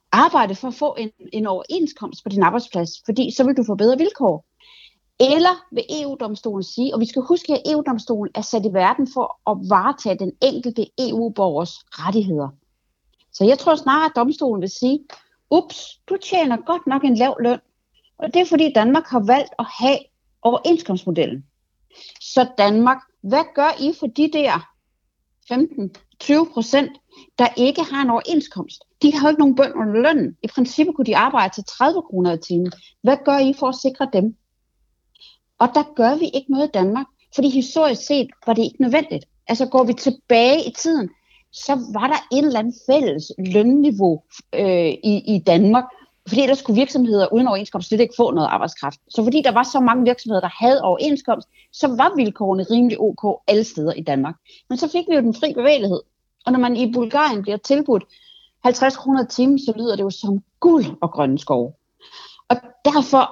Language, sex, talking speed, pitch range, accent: Danish, female, 185 wpm, 215-290 Hz, native